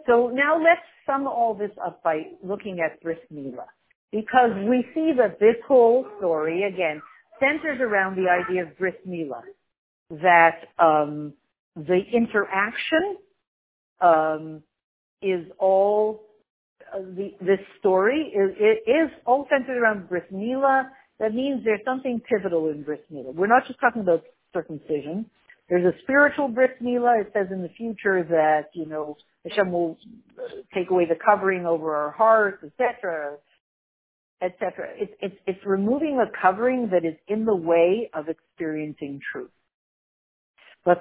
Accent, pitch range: American, 175-245 Hz